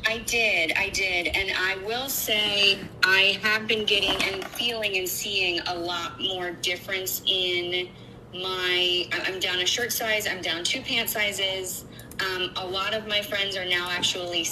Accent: American